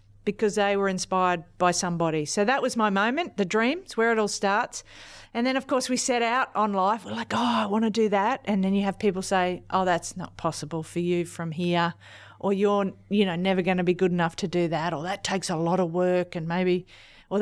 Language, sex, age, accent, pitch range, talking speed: English, female, 40-59, Australian, 175-215 Hz, 245 wpm